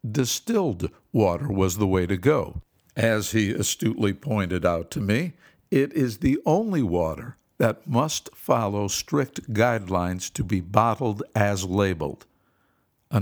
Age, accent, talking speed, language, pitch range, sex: 60-79, American, 135 wpm, English, 95-120 Hz, male